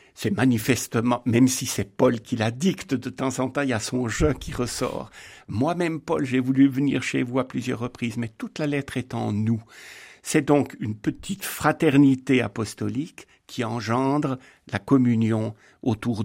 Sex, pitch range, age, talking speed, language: male, 110-135 Hz, 60-79, 175 wpm, French